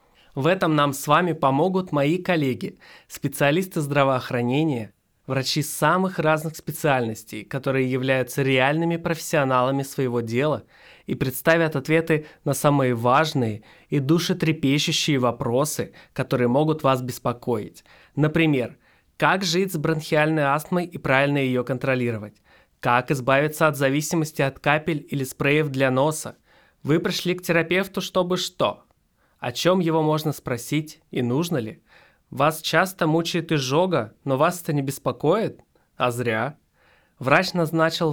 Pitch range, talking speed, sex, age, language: 135-170 Hz, 125 wpm, male, 20-39, Russian